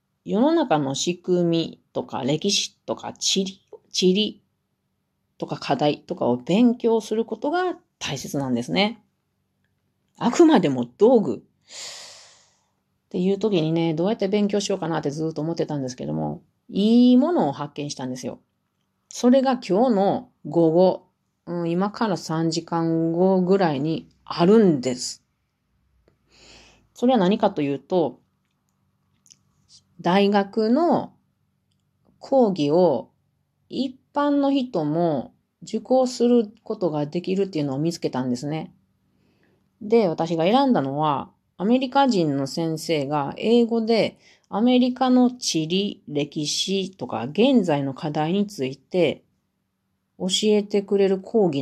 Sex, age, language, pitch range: female, 30-49, Japanese, 150-225 Hz